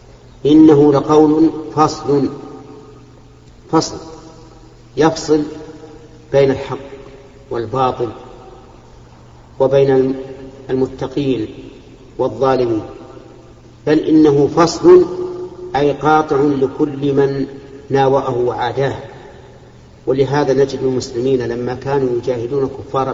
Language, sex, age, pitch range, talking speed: Arabic, male, 50-69, 130-150 Hz, 70 wpm